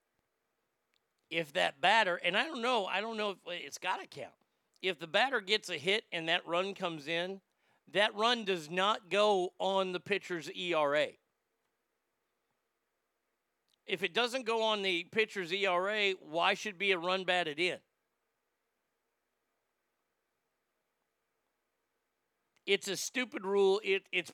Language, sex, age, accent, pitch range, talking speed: English, male, 50-69, American, 165-200 Hz, 135 wpm